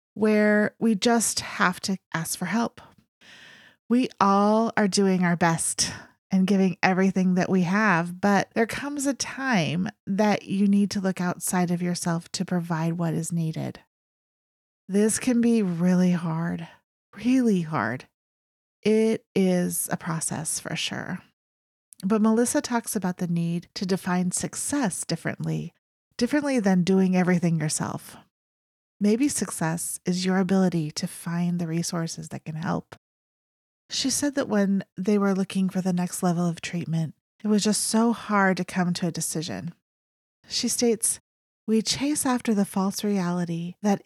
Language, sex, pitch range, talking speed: English, female, 170-205 Hz, 150 wpm